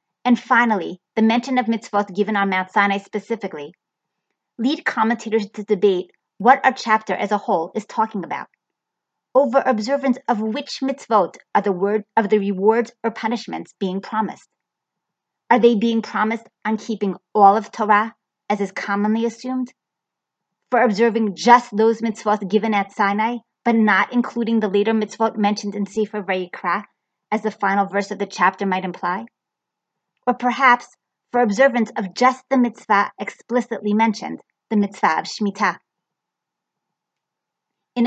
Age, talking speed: 30-49, 150 wpm